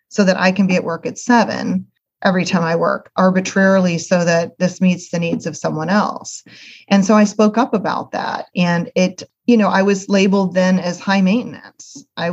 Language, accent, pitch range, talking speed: English, American, 180-205 Hz, 205 wpm